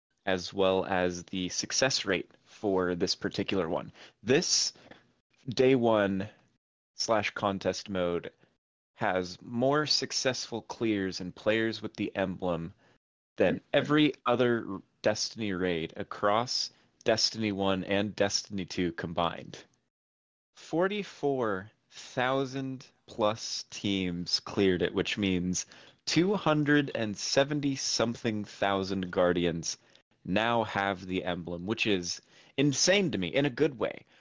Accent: American